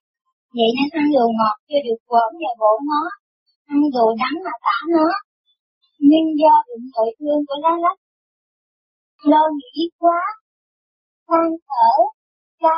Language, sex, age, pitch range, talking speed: Vietnamese, male, 20-39, 245-330 Hz, 145 wpm